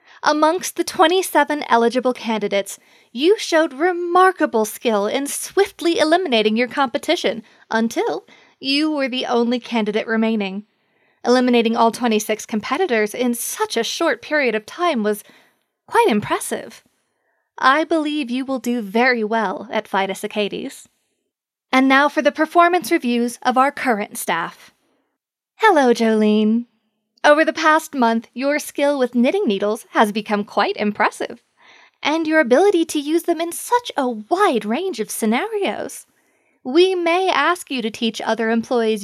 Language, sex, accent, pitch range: English, female, American, 220-315 Hz